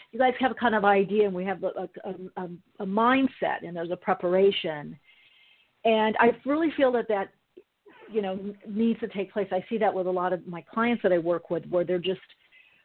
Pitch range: 185-230 Hz